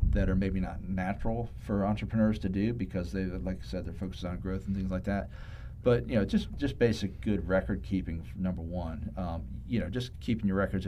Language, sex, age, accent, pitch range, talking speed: English, male, 40-59, American, 85-100 Hz, 220 wpm